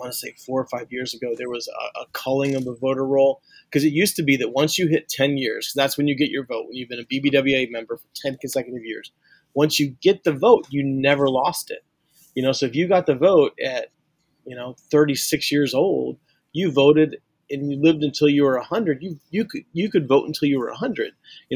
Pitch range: 125-150 Hz